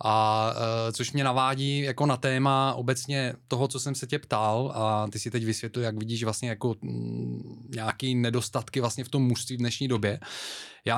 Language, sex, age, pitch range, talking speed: Czech, male, 20-39, 115-130 Hz, 180 wpm